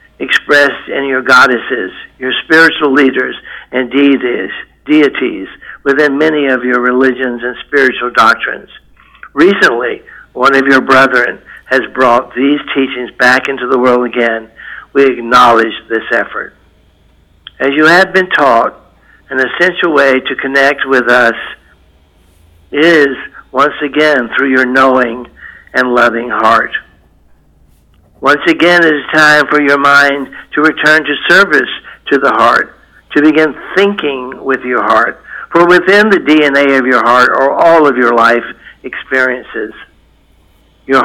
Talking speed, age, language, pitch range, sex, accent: 135 wpm, 60-79, English, 120-145 Hz, male, American